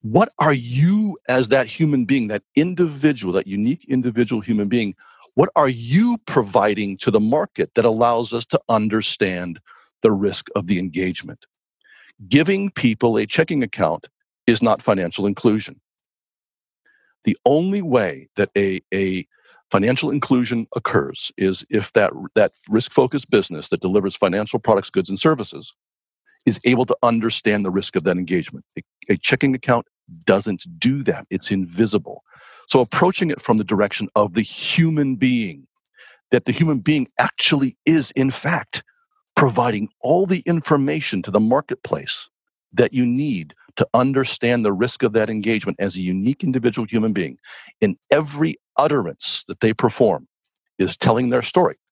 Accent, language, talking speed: American, English, 155 wpm